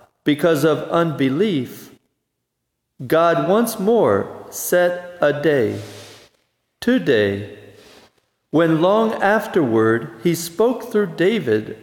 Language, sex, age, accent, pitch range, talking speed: English, male, 40-59, American, 115-190 Hz, 85 wpm